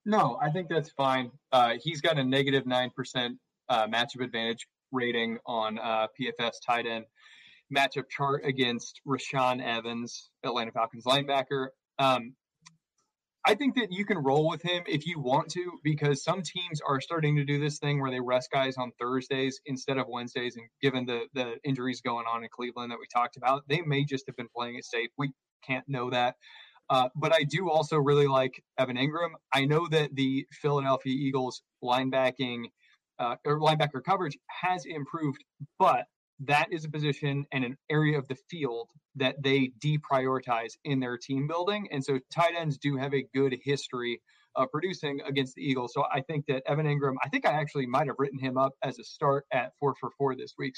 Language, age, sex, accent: English, 20-39, male, American